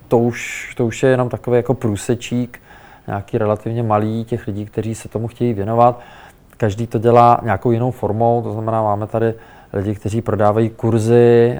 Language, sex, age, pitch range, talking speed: Czech, male, 20-39, 100-115 Hz, 170 wpm